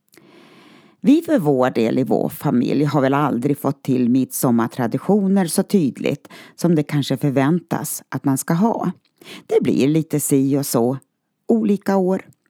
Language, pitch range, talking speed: Swedish, 140-200 Hz, 155 wpm